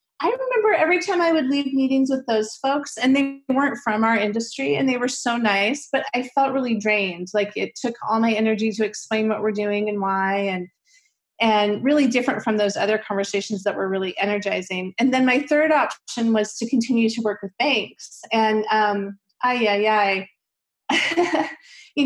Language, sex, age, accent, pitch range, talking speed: English, female, 30-49, American, 205-255 Hz, 185 wpm